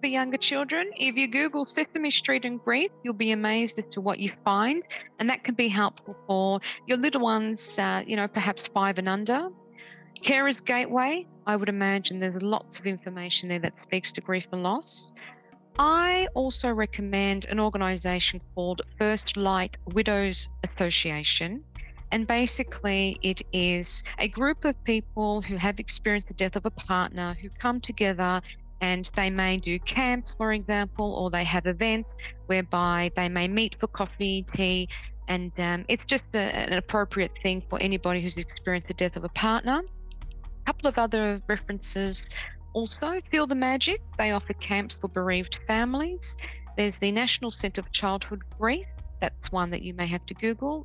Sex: female